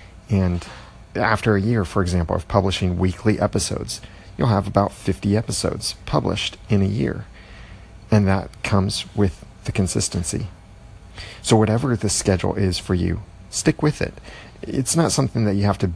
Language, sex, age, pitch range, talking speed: English, male, 40-59, 95-105 Hz, 160 wpm